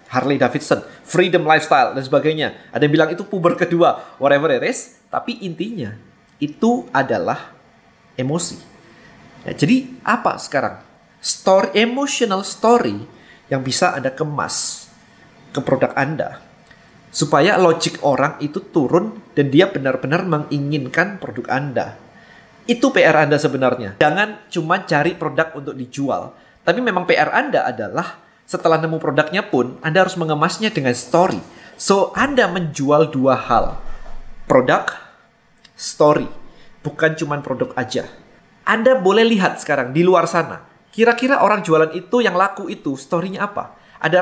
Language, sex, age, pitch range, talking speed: Indonesian, male, 20-39, 155-210 Hz, 130 wpm